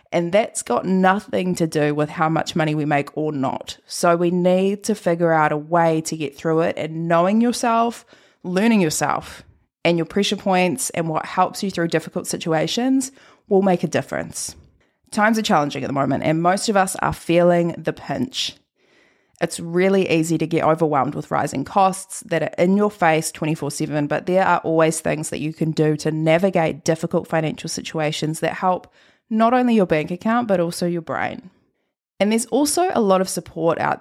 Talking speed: 190 wpm